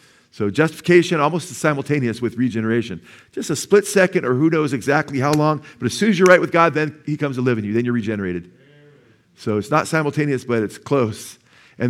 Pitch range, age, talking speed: 120-150 Hz, 50-69, 210 wpm